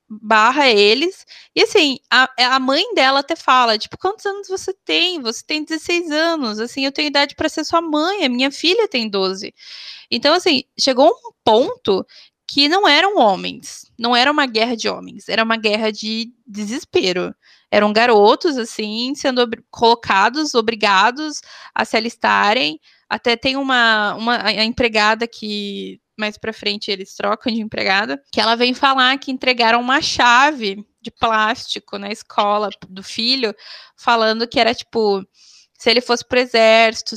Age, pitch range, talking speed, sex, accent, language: 20-39, 220-275 Hz, 155 wpm, female, Brazilian, Portuguese